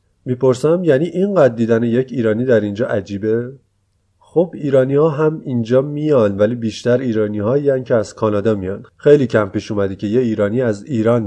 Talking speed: 175 wpm